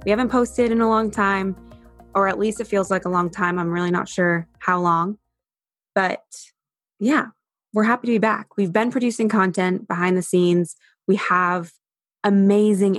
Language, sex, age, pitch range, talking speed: English, female, 20-39, 175-220 Hz, 180 wpm